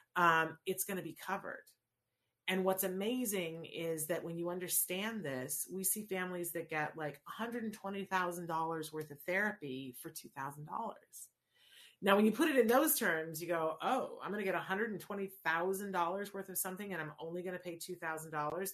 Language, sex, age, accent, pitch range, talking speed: English, female, 40-59, American, 160-210 Hz, 170 wpm